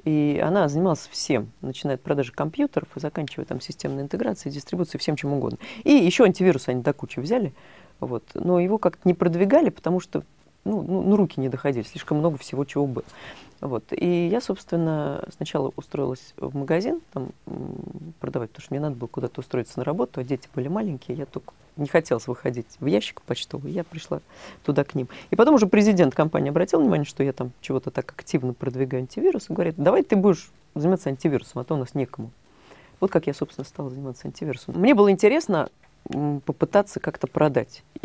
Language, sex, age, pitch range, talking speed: Russian, female, 30-49, 135-180 Hz, 190 wpm